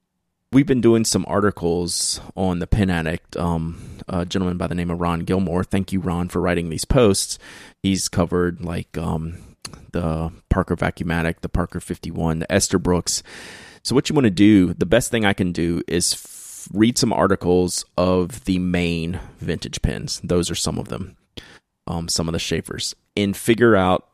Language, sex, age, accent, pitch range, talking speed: English, male, 30-49, American, 85-100 Hz, 180 wpm